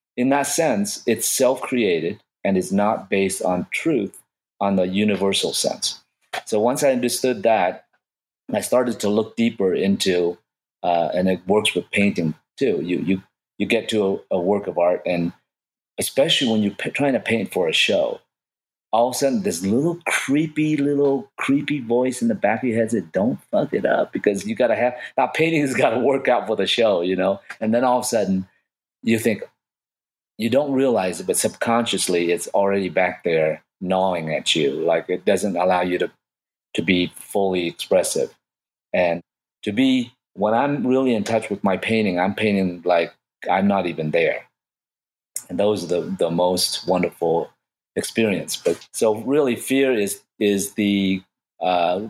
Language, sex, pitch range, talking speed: English, male, 95-125 Hz, 180 wpm